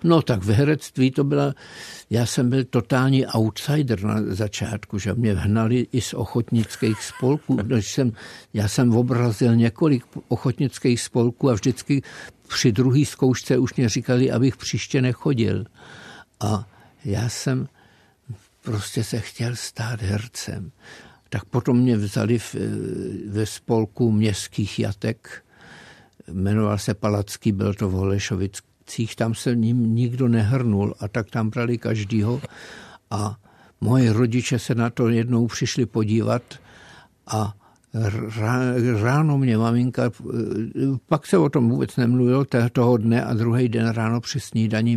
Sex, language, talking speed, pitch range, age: male, Czech, 130 wpm, 110-125 Hz, 50-69